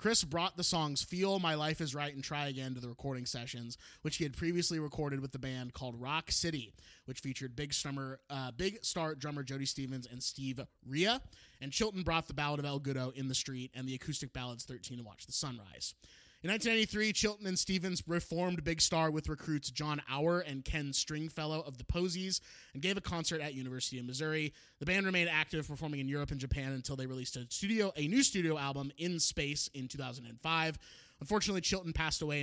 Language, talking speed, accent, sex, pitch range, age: English, 205 wpm, American, male, 135-165 Hz, 20-39